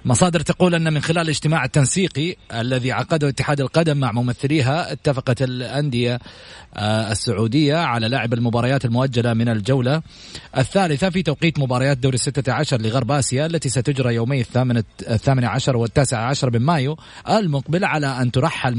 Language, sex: Arabic, male